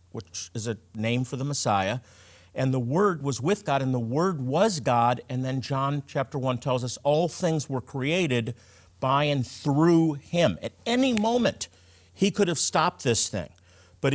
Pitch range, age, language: 125-170 Hz, 50-69, English